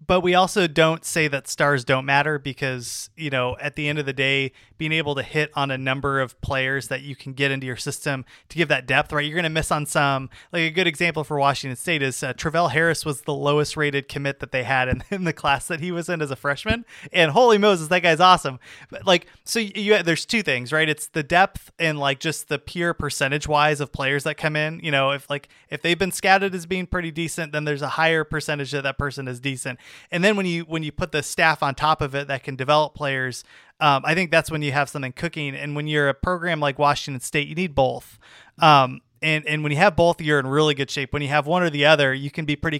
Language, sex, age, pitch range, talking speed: English, male, 30-49, 140-175 Hz, 265 wpm